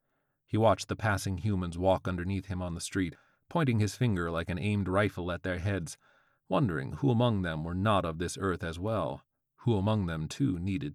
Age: 40-59